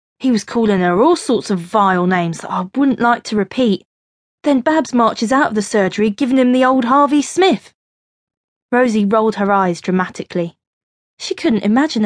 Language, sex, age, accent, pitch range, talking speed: English, female, 20-39, British, 195-275 Hz, 180 wpm